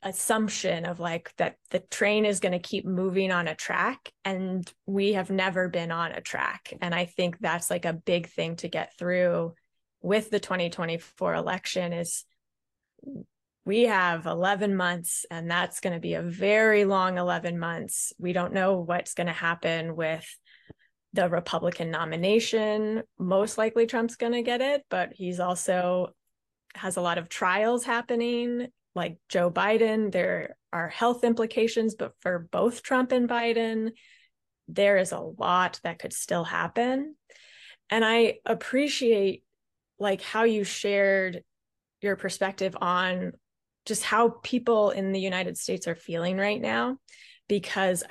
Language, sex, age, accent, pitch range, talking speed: English, female, 20-39, American, 175-220 Hz, 150 wpm